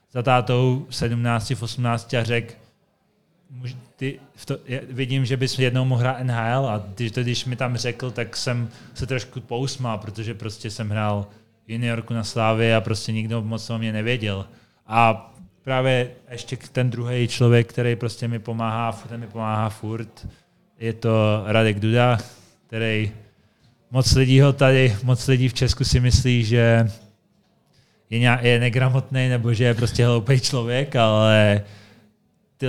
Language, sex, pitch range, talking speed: Czech, male, 110-125 Hz, 140 wpm